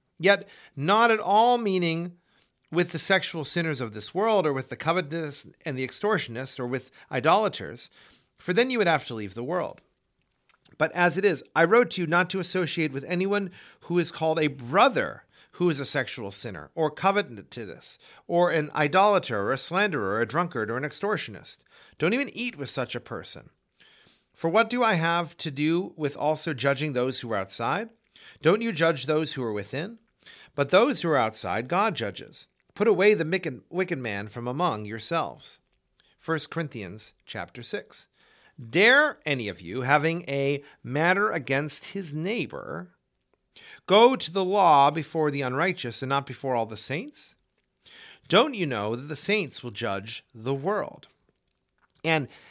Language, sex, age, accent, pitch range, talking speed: English, male, 40-59, American, 130-185 Hz, 170 wpm